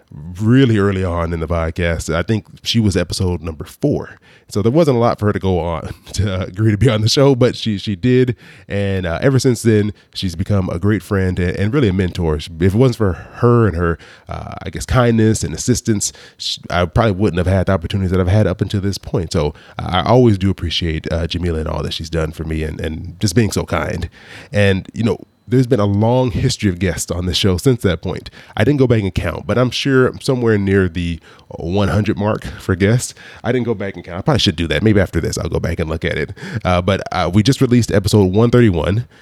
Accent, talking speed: American, 245 wpm